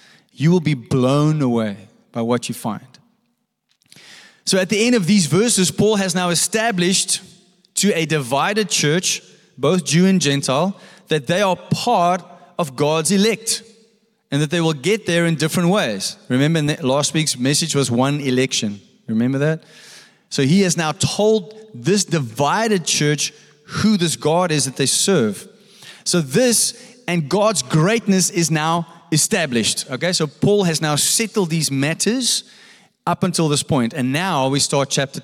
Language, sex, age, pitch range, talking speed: English, male, 20-39, 150-215 Hz, 160 wpm